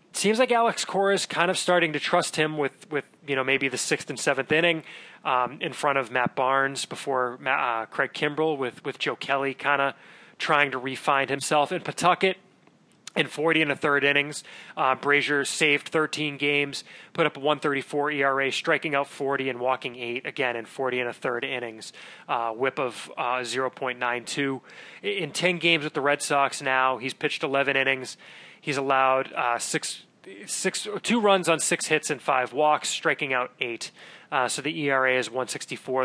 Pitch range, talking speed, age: 130-165 Hz, 195 wpm, 30-49